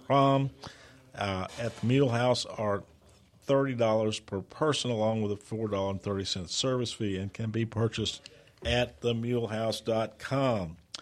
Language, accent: English, American